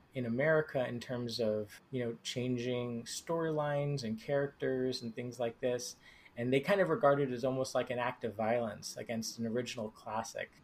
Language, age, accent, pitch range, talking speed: English, 30-49, American, 115-135 Hz, 180 wpm